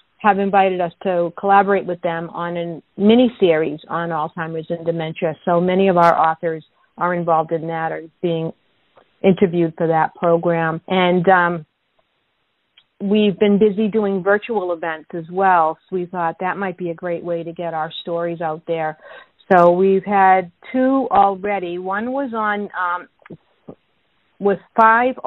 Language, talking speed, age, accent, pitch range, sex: English, 155 wpm, 50-69, American, 170-200 Hz, female